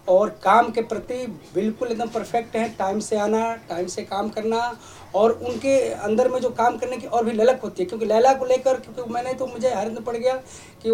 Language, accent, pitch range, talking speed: Hindi, native, 205-250 Hz, 220 wpm